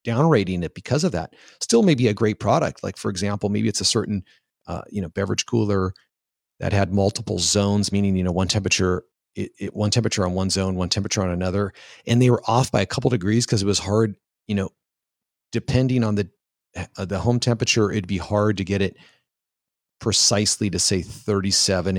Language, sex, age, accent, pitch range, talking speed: English, male, 40-59, American, 95-115 Hz, 200 wpm